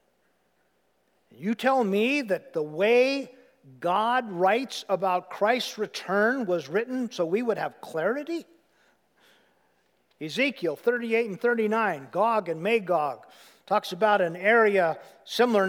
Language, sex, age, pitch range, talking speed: English, male, 50-69, 180-240 Hz, 115 wpm